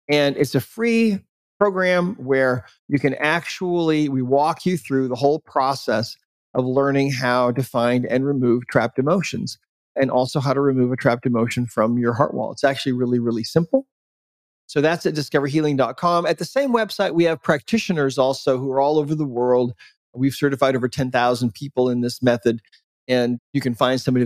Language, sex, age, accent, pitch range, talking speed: English, male, 40-59, American, 125-160 Hz, 180 wpm